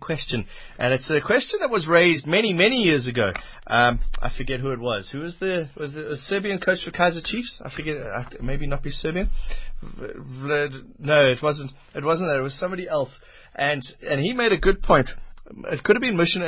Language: English